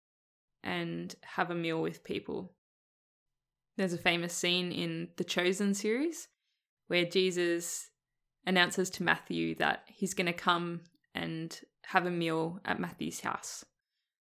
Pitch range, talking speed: 165-190 Hz, 125 wpm